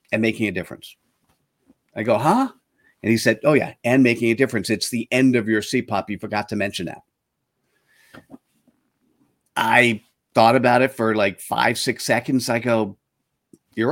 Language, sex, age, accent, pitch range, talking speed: English, male, 50-69, American, 110-140 Hz, 175 wpm